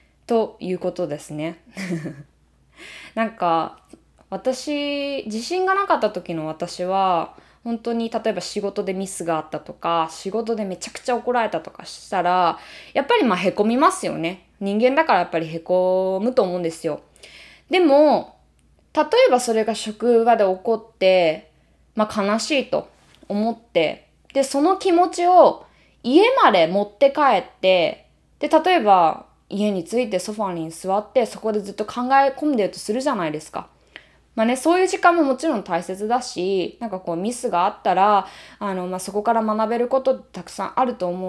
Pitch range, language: 185-270 Hz, Japanese